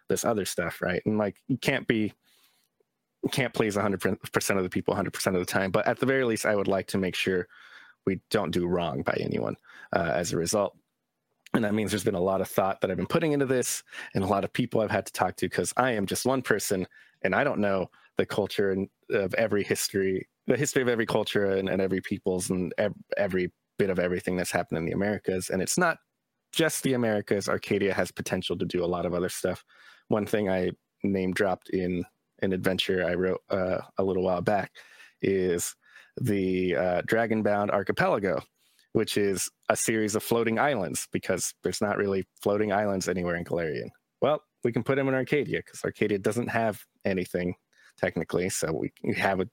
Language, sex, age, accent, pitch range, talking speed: English, male, 20-39, American, 90-110 Hz, 205 wpm